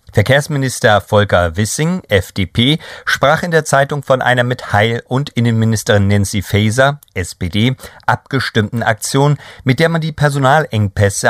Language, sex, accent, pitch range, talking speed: German, male, German, 105-135 Hz, 125 wpm